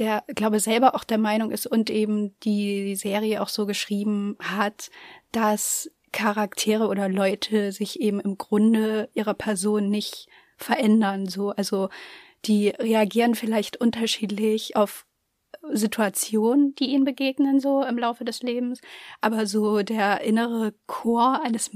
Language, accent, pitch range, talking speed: German, German, 205-230 Hz, 135 wpm